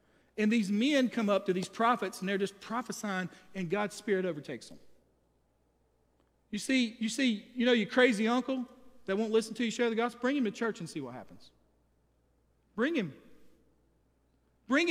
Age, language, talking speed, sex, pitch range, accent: 40-59, English, 180 wpm, male, 190-250 Hz, American